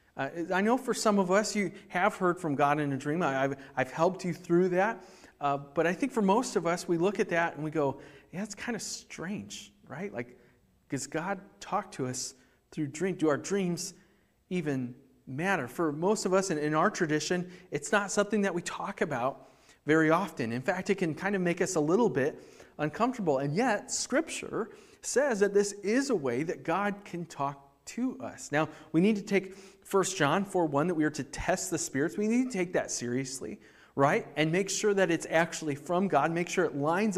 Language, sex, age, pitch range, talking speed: English, male, 30-49, 145-195 Hz, 220 wpm